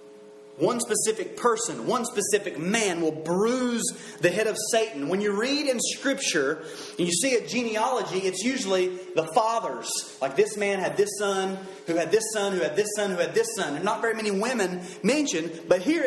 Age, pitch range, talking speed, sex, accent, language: 30-49, 170-225 Hz, 195 wpm, male, American, English